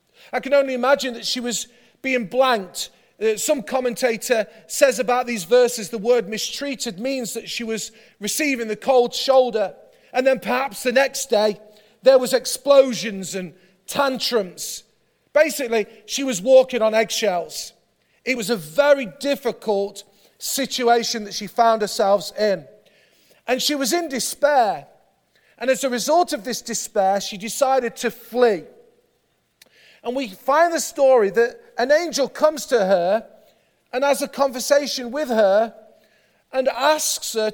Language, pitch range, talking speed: English, 220-280 Hz, 145 wpm